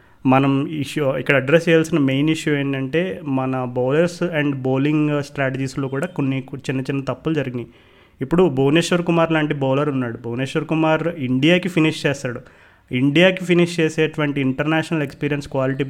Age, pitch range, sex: 30-49, 135-160 Hz, male